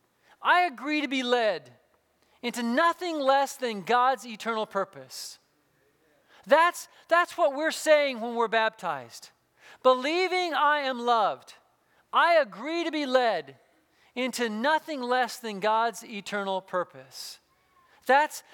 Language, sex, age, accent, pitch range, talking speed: English, male, 40-59, American, 225-300 Hz, 120 wpm